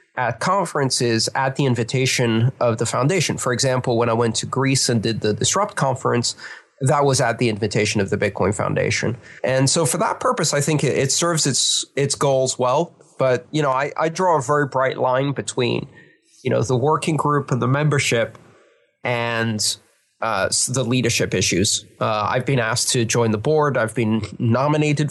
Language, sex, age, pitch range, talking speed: English, male, 30-49, 115-140 Hz, 185 wpm